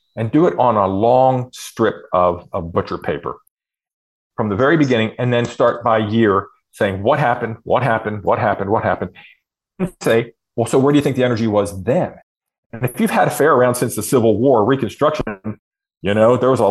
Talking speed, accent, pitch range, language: 210 wpm, American, 110-160 Hz, English